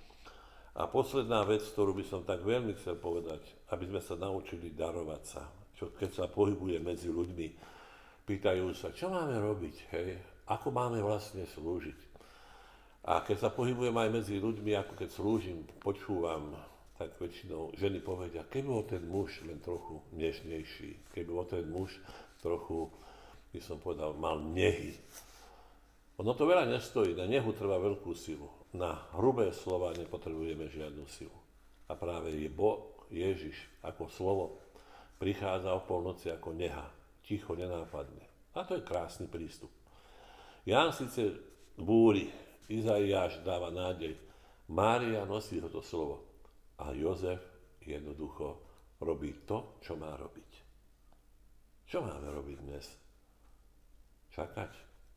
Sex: male